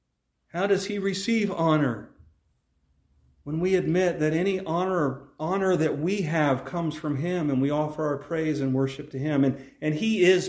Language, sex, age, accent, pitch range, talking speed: English, male, 40-59, American, 135-180 Hz, 175 wpm